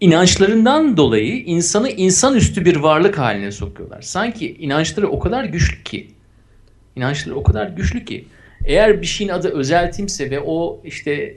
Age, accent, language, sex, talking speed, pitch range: 50-69, native, Turkish, male, 145 wpm, 125-200 Hz